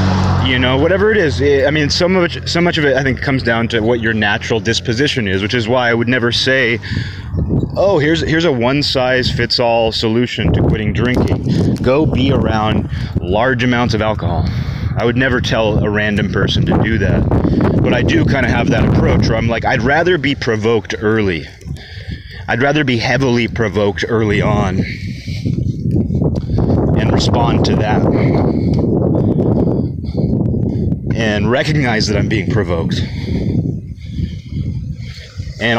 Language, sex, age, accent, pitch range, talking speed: English, male, 30-49, American, 110-135 Hz, 160 wpm